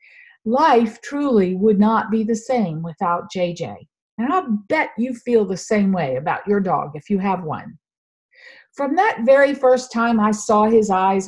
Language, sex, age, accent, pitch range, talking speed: English, female, 50-69, American, 205-285 Hz, 175 wpm